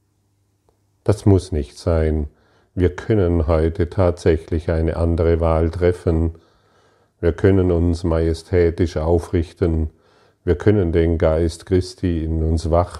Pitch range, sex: 80-95 Hz, male